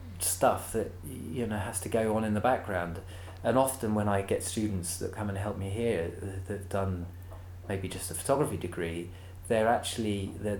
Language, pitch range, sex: English, 90-105 Hz, male